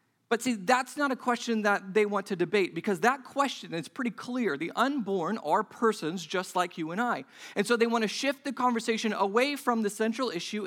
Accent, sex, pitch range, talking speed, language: American, male, 195-245 Hz, 220 wpm, English